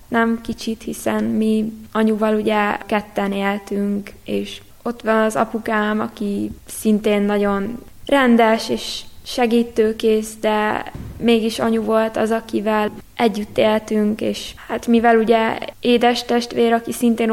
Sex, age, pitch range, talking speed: female, 20-39, 210-230 Hz, 120 wpm